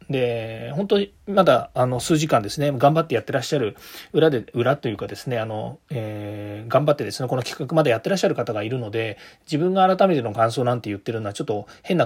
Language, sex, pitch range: Japanese, male, 115-165 Hz